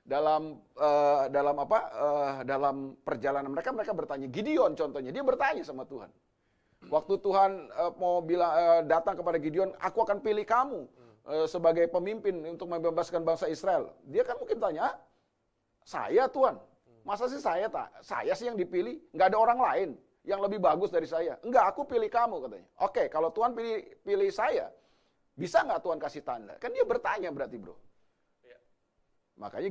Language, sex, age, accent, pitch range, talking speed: Indonesian, male, 30-49, native, 155-235 Hz, 165 wpm